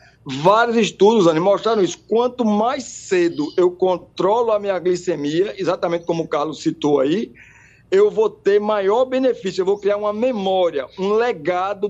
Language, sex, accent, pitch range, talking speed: Portuguese, male, Brazilian, 170-240 Hz, 150 wpm